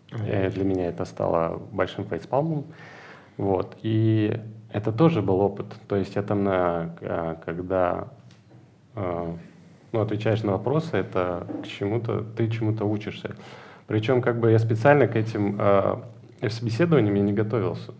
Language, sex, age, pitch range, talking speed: Russian, male, 20-39, 95-120 Hz, 120 wpm